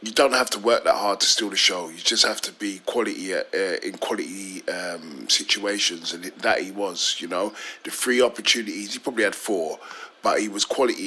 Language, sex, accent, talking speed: English, male, British, 210 wpm